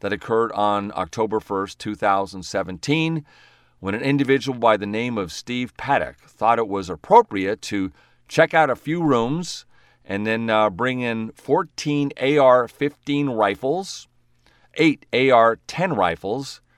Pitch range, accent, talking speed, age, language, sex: 95-140 Hz, American, 130 wpm, 40-59, English, male